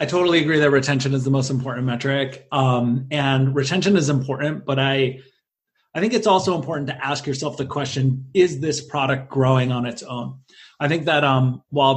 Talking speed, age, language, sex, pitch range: 195 wpm, 30-49, English, male, 130-155 Hz